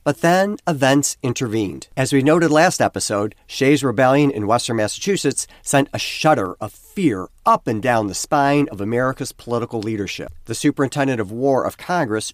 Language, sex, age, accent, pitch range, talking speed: English, male, 50-69, American, 110-145 Hz, 165 wpm